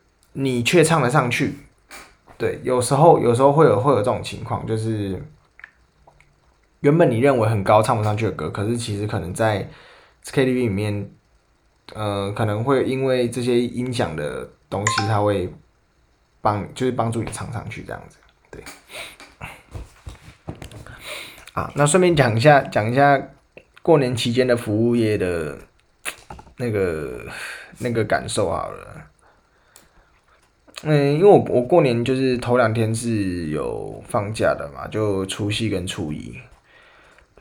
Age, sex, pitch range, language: 20-39, male, 105-135 Hz, Chinese